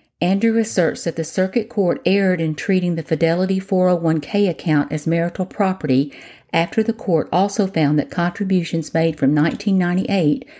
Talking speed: 145 wpm